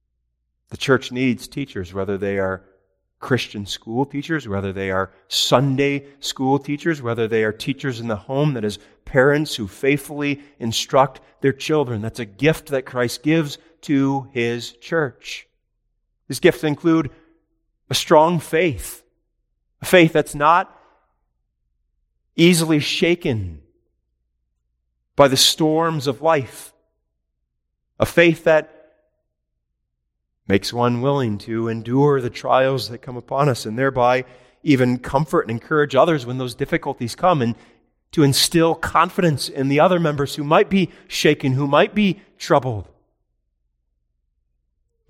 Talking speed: 130 wpm